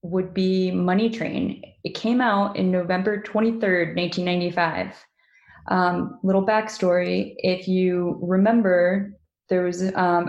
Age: 20-39